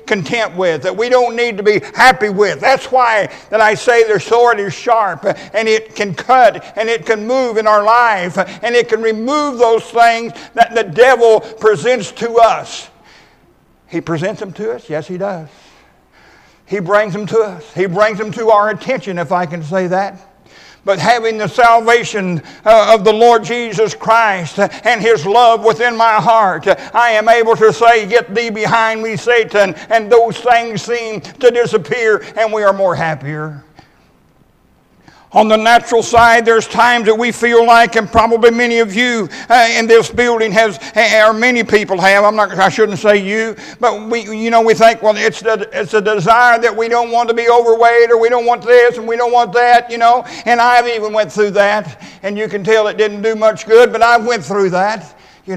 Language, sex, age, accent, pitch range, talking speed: English, male, 60-79, American, 200-235 Hz, 200 wpm